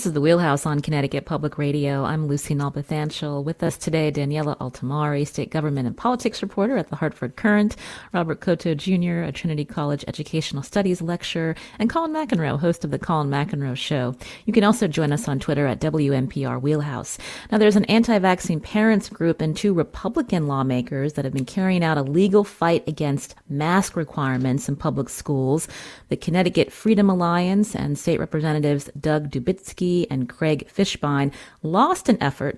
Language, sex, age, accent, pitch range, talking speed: English, female, 30-49, American, 145-185 Hz, 170 wpm